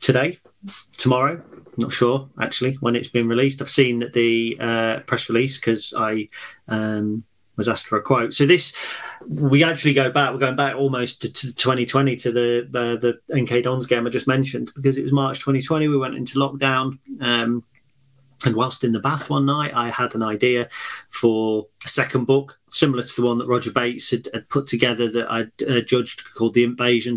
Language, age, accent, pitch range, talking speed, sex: English, 40-59, British, 115-135 Hz, 200 wpm, male